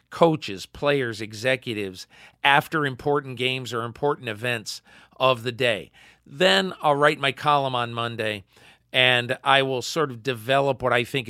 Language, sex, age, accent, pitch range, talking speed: English, male, 40-59, American, 120-150 Hz, 150 wpm